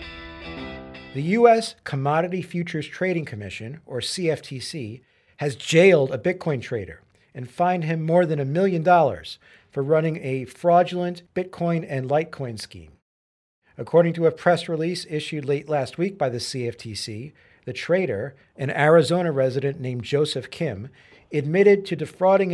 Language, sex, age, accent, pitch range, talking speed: English, male, 50-69, American, 130-170 Hz, 140 wpm